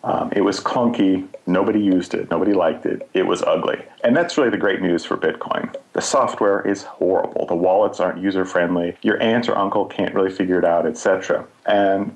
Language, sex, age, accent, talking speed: English, male, 40-59, American, 200 wpm